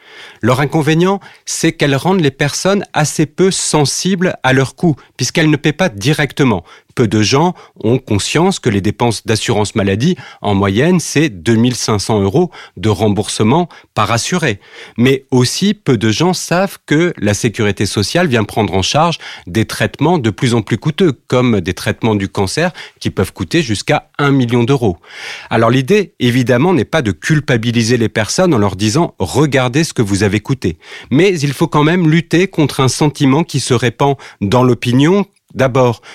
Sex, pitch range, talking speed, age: male, 110-155 Hz, 175 wpm, 40-59